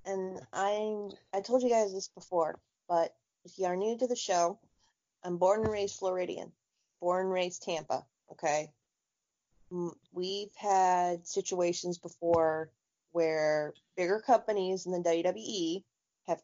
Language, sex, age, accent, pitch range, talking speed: English, female, 30-49, American, 170-195 Hz, 135 wpm